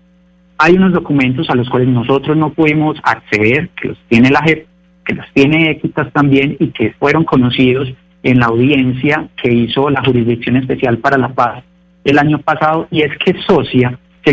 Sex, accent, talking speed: male, Colombian, 180 wpm